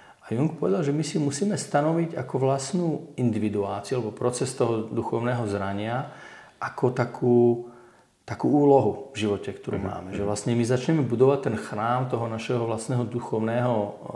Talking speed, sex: 140 wpm, male